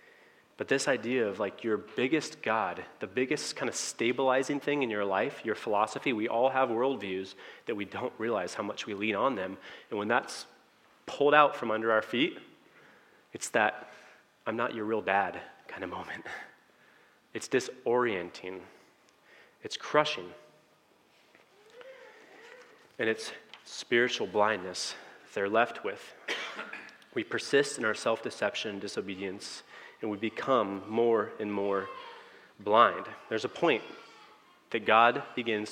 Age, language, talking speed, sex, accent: 30-49, English, 140 wpm, male, American